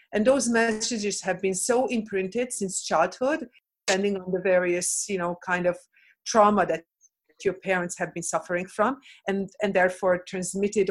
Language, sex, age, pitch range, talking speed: English, female, 50-69, 185-220 Hz, 160 wpm